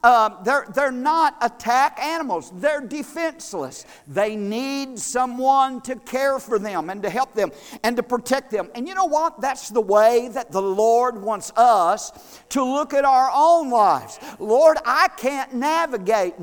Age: 50-69